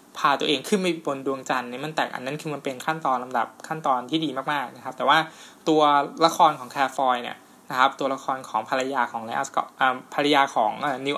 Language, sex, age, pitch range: Thai, male, 20-39, 130-160 Hz